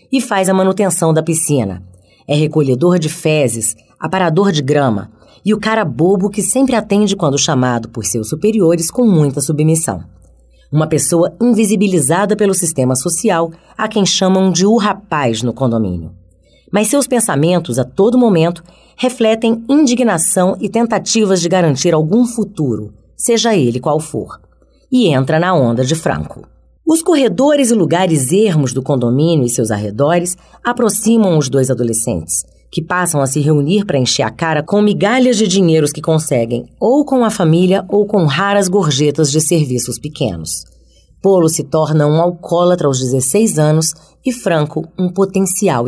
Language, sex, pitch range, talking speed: Portuguese, female, 130-200 Hz, 155 wpm